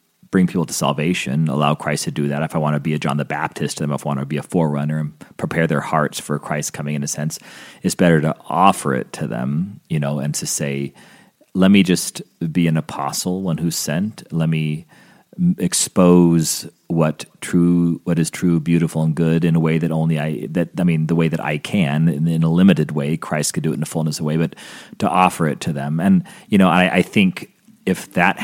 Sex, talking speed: male, 235 wpm